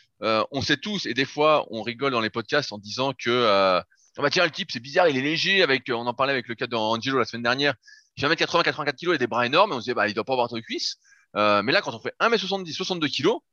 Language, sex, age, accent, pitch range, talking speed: French, male, 20-39, French, 110-155 Hz, 295 wpm